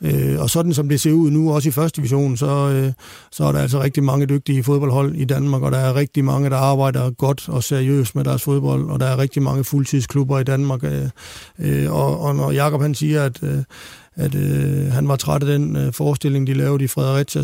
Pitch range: 135-150 Hz